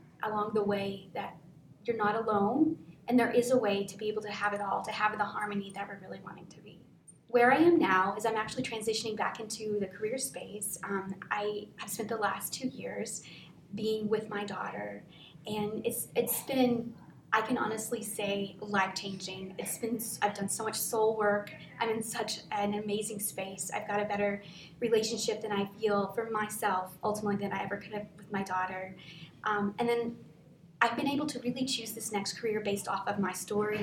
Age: 20-39